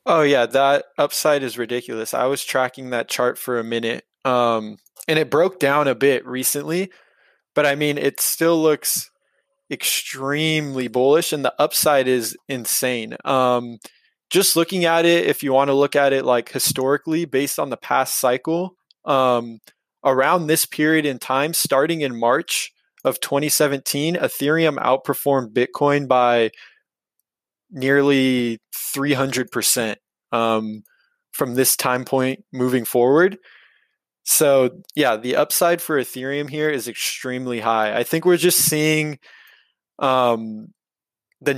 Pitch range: 125-145 Hz